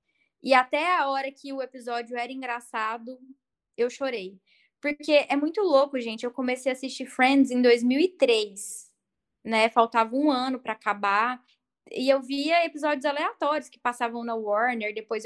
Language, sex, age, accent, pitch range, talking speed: Portuguese, female, 10-29, Brazilian, 230-280 Hz, 155 wpm